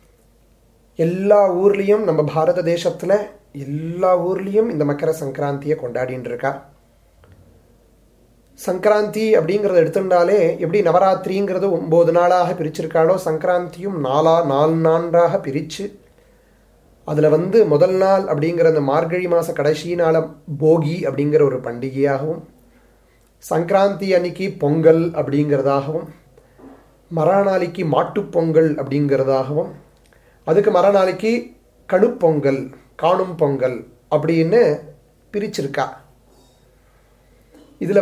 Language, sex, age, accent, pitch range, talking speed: English, male, 30-49, Indian, 145-185 Hz, 80 wpm